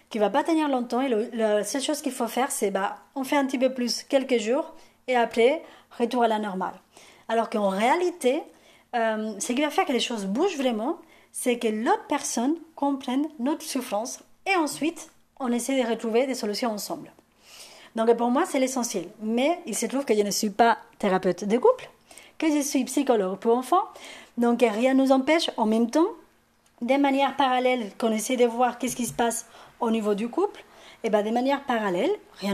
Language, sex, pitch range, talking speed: French, female, 215-280 Hz, 205 wpm